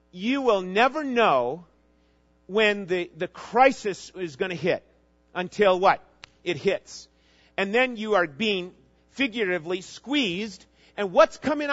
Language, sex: English, male